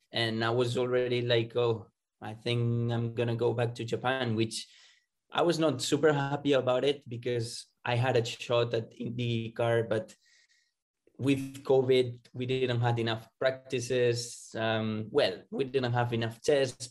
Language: English